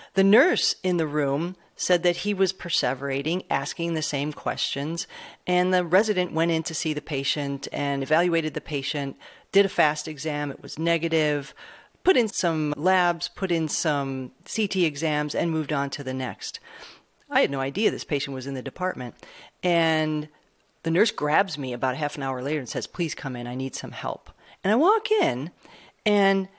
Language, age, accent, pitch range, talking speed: English, 40-59, American, 150-205 Hz, 190 wpm